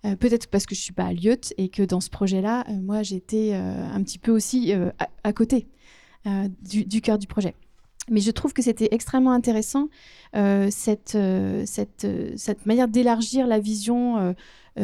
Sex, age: female, 30-49